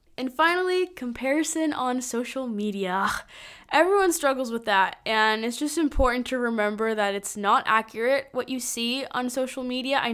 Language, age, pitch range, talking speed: English, 10-29, 215-285 Hz, 160 wpm